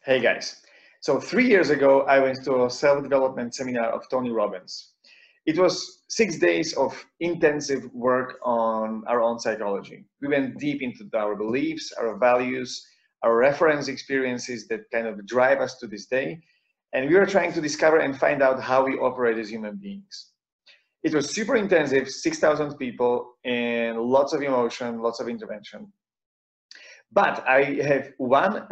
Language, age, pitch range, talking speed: English, 30-49, 115-145 Hz, 160 wpm